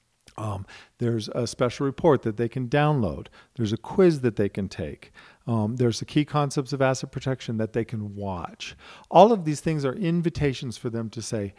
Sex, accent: male, American